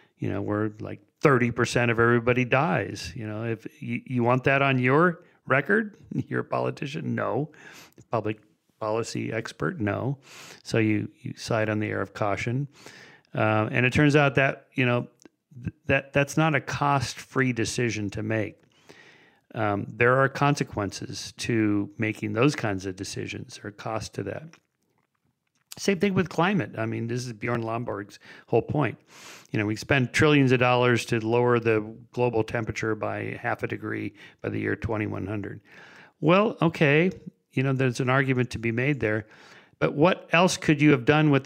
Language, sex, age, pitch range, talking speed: English, male, 40-59, 110-135 Hz, 170 wpm